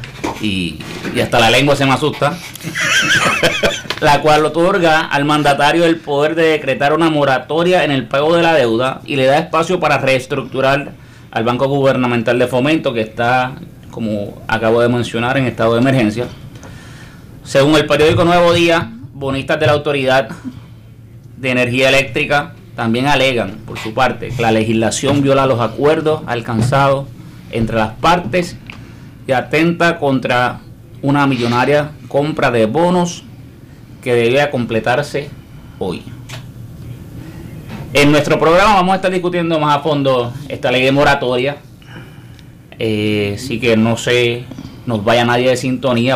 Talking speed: 140 wpm